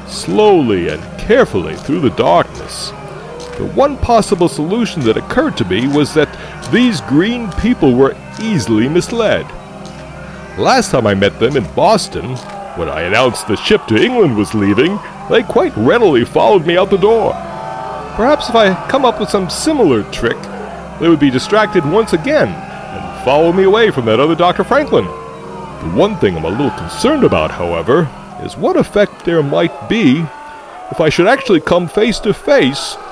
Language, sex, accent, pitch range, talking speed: English, male, American, 150-230 Hz, 165 wpm